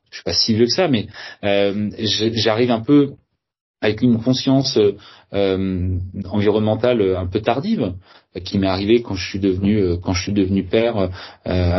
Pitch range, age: 105-135 Hz, 30-49